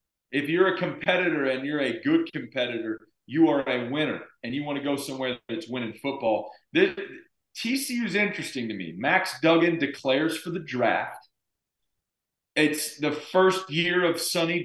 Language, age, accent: English, 40-59, American